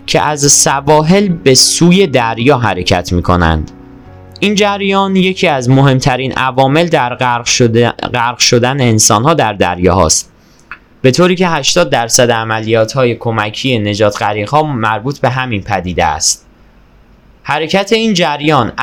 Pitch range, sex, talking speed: 115-155 Hz, male, 130 wpm